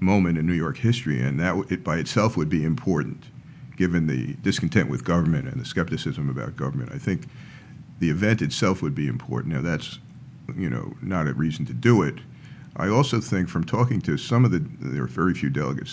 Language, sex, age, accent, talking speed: English, male, 50-69, American, 205 wpm